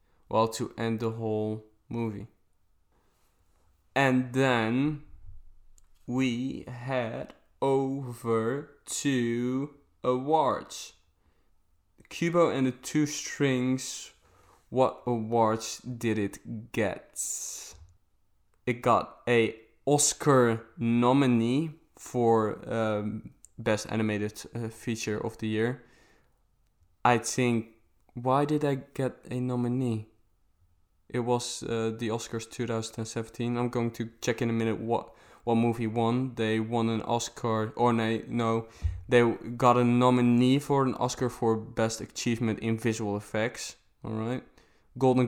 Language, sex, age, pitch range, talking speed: English, male, 20-39, 110-125 Hz, 115 wpm